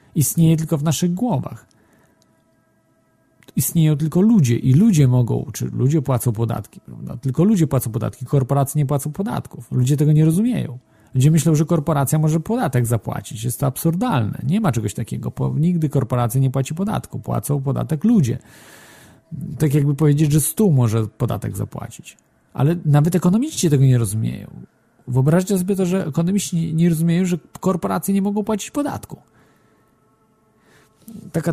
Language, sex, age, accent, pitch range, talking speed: Polish, male, 40-59, native, 120-165 Hz, 150 wpm